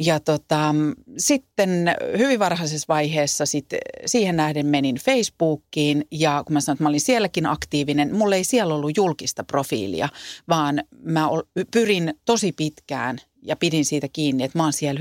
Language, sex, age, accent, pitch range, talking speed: Finnish, female, 40-59, native, 145-180 Hz, 155 wpm